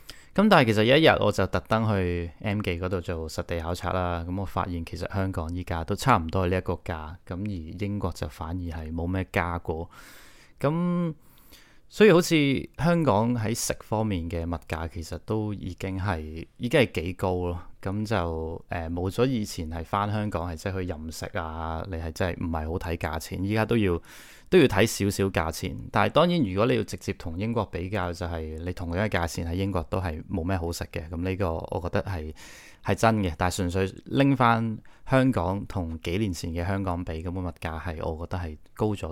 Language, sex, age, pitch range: Chinese, male, 20-39, 85-110 Hz